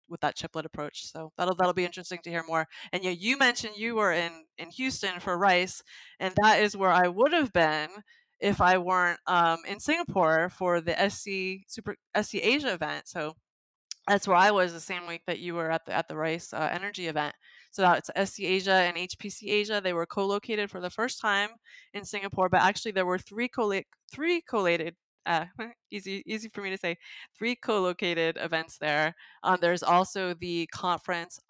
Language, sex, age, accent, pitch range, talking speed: English, female, 20-39, American, 165-205 Hz, 195 wpm